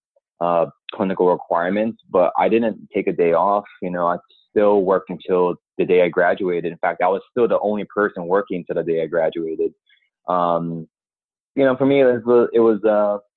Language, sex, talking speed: English, male, 185 wpm